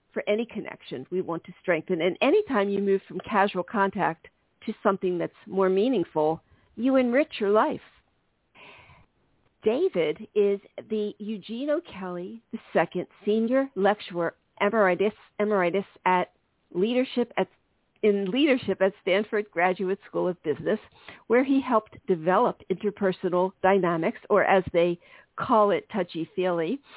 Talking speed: 120 wpm